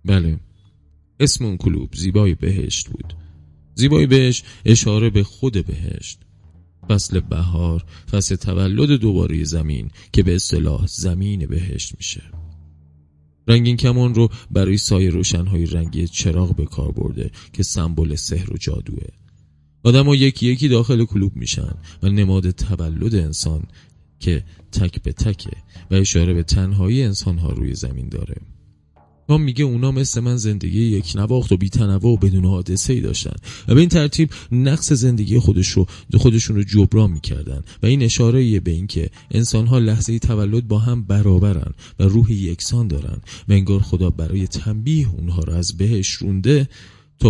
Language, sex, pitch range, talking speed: Persian, male, 85-115 Hz, 155 wpm